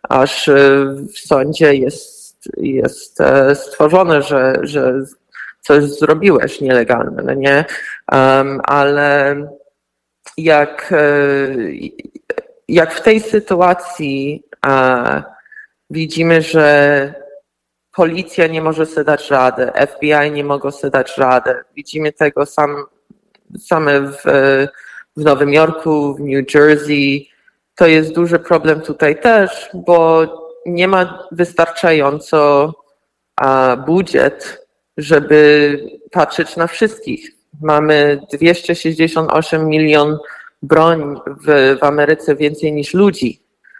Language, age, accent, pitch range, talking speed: Polish, 20-39, native, 145-175 Hz, 95 wpm